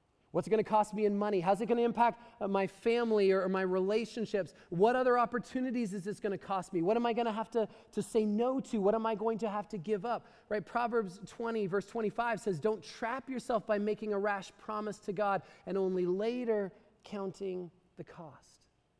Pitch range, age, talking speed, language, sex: 190-230 Hz, 20-39, 220 wpm, English, male